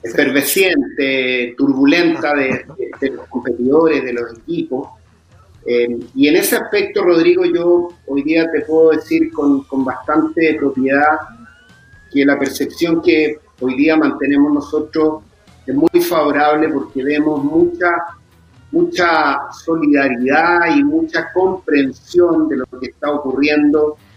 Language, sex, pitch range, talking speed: Spanish, male, 135-175 Hz, 125 wpm